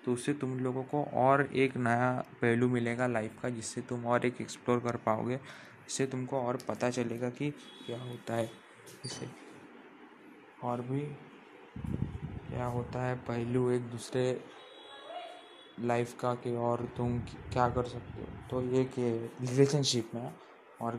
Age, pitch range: 20-39, 120-145 Hz